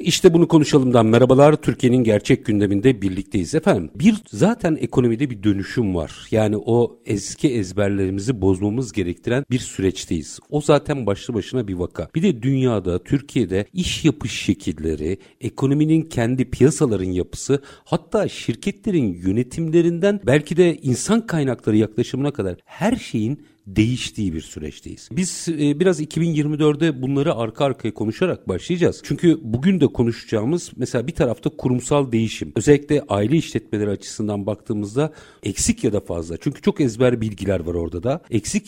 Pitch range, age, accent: 105-150 Hz, 60-79, native